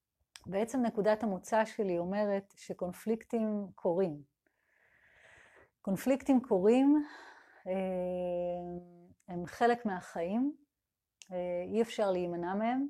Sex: female